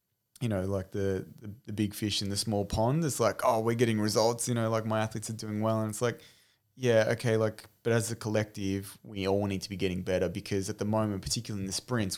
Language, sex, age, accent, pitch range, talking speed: English, male, 20-39, Australian, 100-120 Hz, 245 wpm